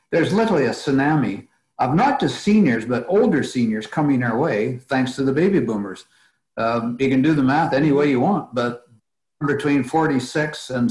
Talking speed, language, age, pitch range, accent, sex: 180 wpm, English, 60-79, 120-145 Hz, American, male